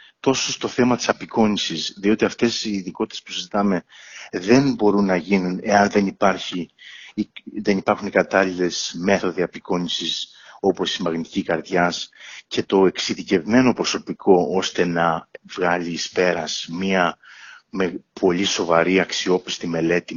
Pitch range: 85-110 Hz